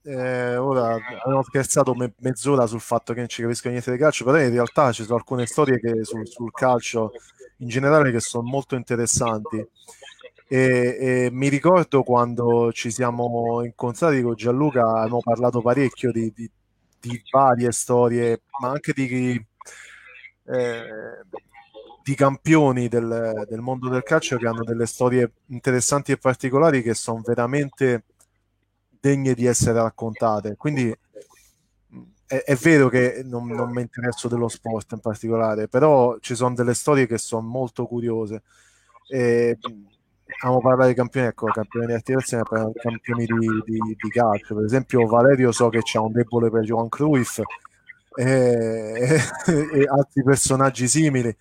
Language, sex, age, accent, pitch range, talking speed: Italian, male, 30-49, native, 115-130 Hz, 150 wpm